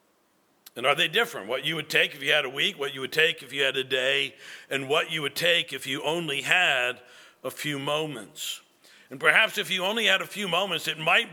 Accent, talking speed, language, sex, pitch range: American, 240 wpm, English, male, 145-190 Hz